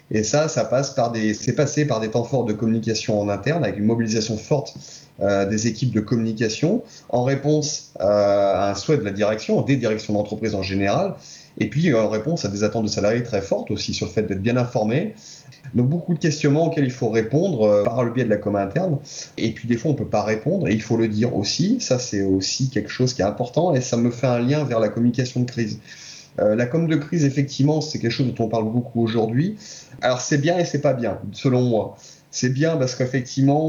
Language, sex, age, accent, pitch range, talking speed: French, male, 30-49, French, 110-140 Hz, 240 wpm